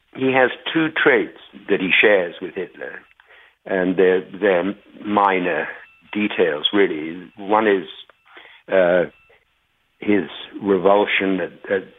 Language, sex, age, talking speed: English, male, 60-79, 105 wpm